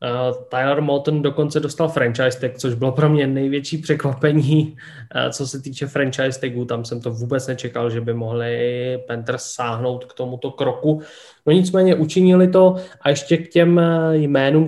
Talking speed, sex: 160 wpm, male